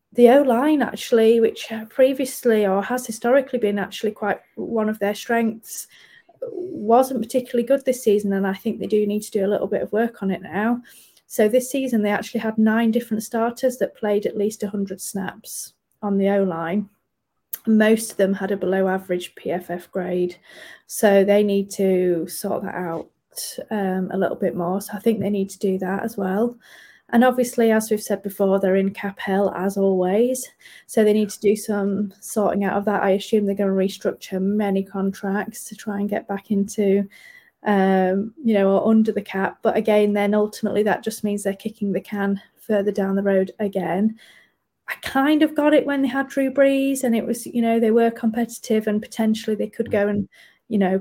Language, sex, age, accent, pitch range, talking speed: English, female, 30-49, British, 200-230 Hz, 200 wpm